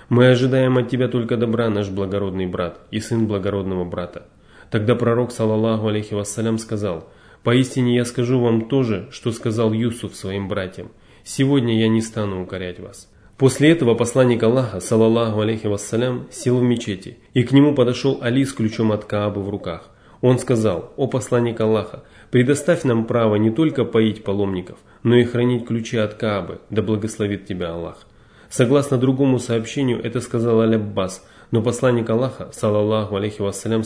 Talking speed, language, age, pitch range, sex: 160 wpm, Russian, 20-39, 105-125 Hz, male